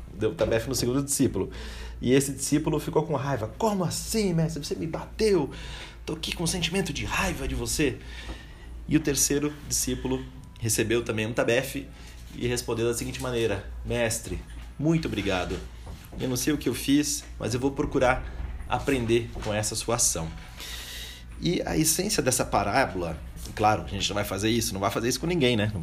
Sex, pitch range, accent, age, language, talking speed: male, 95-145 Hz, Brazilian, 30-49, Portuguese, 185 wpm